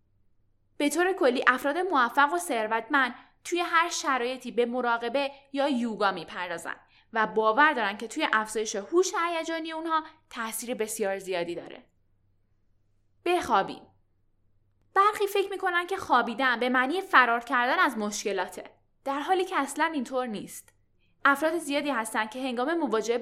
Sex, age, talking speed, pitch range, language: female, 10-29, 135 wpm, 215-315 Hz, Persian